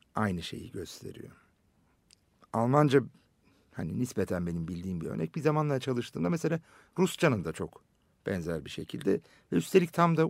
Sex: male